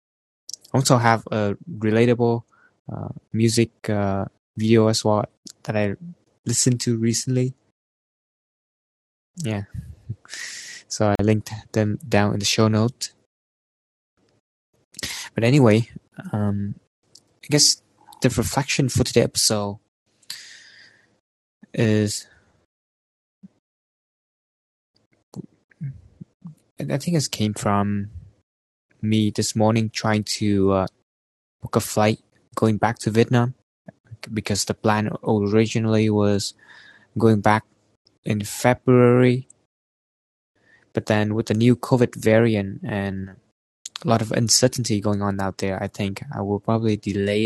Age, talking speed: 20-39, 105 wpm